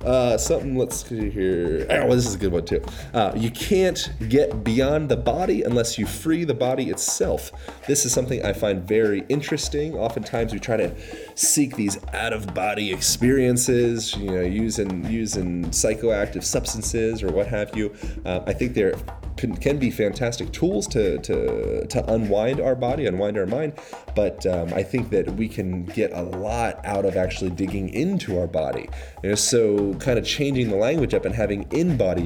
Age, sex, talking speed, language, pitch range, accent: 30-49, male, 180 wpm, English, 95-130 Hz, American